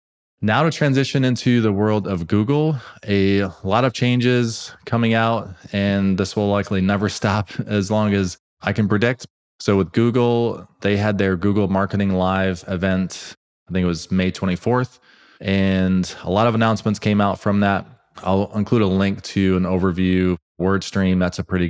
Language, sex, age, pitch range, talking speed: English, male, 20-39, 90-110 Hz, 170 wpm